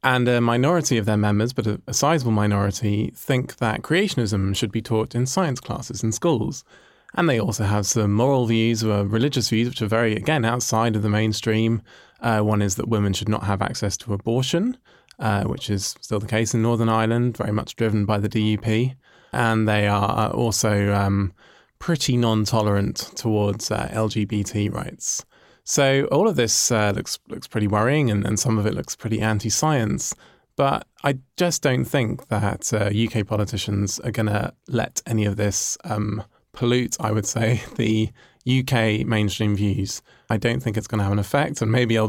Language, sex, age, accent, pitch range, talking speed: English, male, 20-39, British, 105-120 Hz, 185 wpm